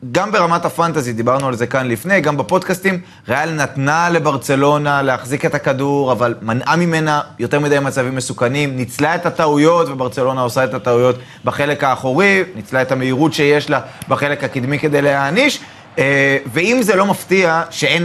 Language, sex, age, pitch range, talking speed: Hebrew, male, 20-39, 130-175 Hz, 155 wpm